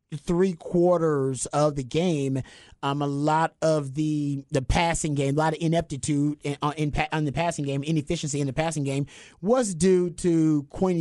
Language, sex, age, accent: English, male, 30-49, American